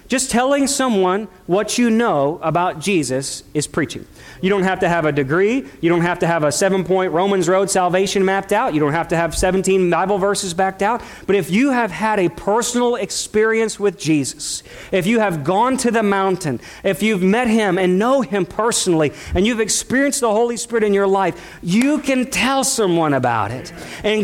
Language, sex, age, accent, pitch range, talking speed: English, male, 40-59, American, 185-250 Hz, 200 wpm